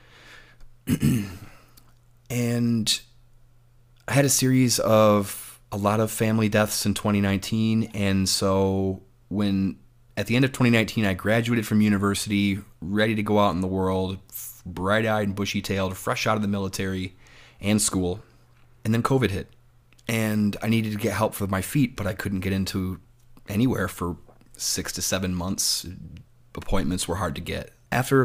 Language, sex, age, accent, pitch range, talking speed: English, male, 30-49, American, 95-120 Hz, 155 wpm